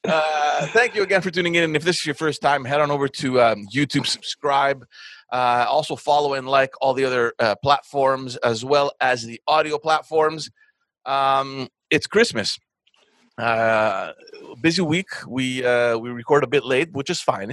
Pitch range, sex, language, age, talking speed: 115-150 Hz, male, English, 30-49, 180 wpm